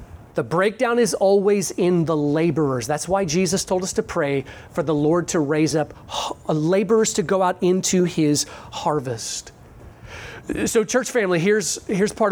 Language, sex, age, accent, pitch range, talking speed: English, male, 30-49, American, 155-240 Hz, 160 wpm